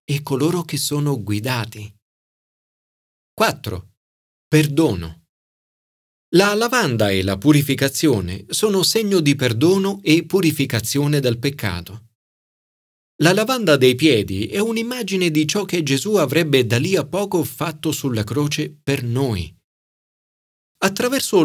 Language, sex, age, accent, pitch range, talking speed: Italian, male, 40-59, native, 105-160 Hz, 115 wpm